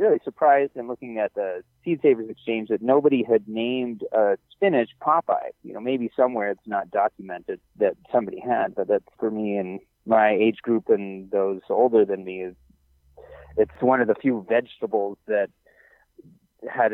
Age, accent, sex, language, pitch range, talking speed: 30-49, American, male, English, 105-160 Hz, 175 wpm